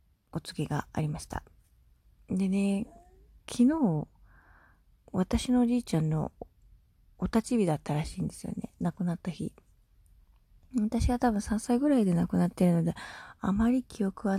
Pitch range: 160-215 Hz